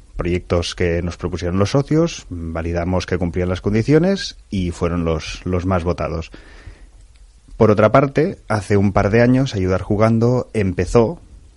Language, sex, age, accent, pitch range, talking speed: Spanish, male, 30-49, Spanish, 85-105 Hz, 145 wpm